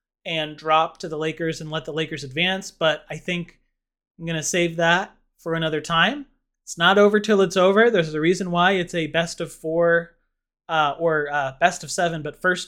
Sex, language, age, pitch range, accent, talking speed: male, English, 20-39, 155-180 Hz, American, 210 wpm